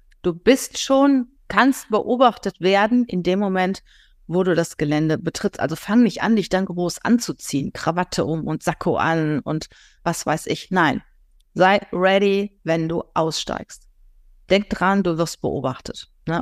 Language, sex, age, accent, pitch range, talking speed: German, female, 30-49, German, 150-185 Hz, 155 wpm